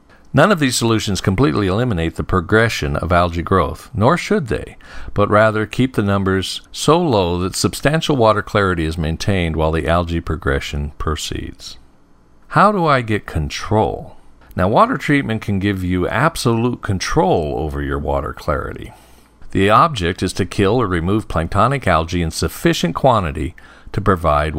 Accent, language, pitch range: American, English, 85-115 Hz